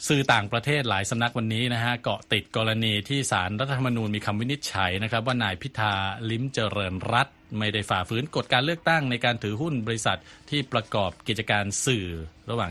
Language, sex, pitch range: Thai, male, 100-125 Hz